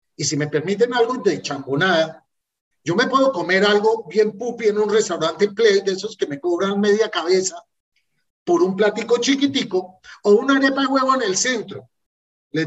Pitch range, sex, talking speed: 175-265 Hz, male, 180 wpm